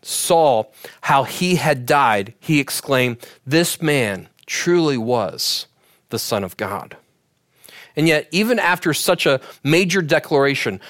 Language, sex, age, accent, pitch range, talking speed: English, male, 40-59, American, 135-180 Hz, 125 wpm